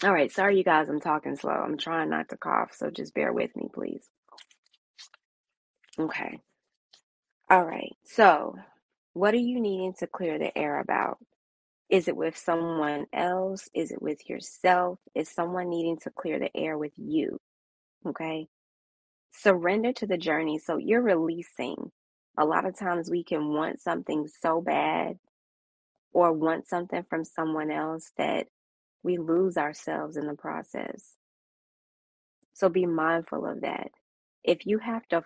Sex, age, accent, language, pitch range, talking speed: female, 20-39, American, English, 155-190 Hz, 155 wpm